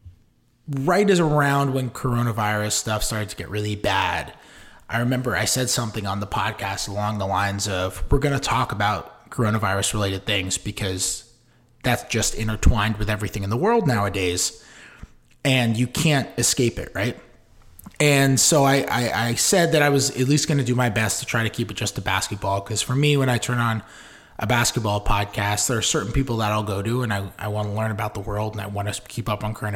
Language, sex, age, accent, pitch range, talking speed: English, male, 20-39, American, 105-130 Hz, 210 wpm